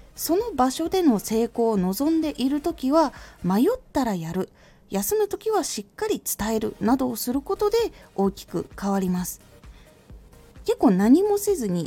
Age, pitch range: 20-39, 195-315 Hz